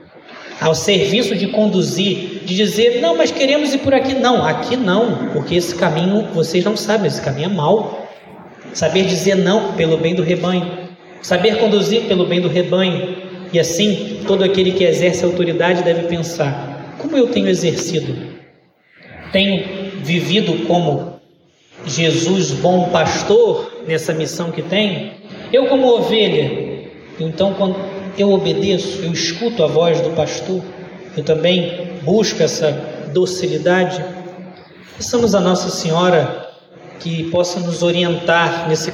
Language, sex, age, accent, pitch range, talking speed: Portuguese, male, 20-39, Brazilian, 170-195 Hz, 135 wpm